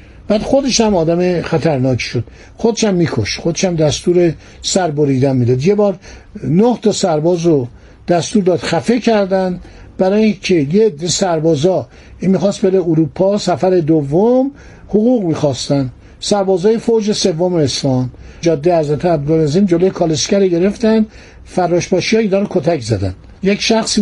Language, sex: Persian, male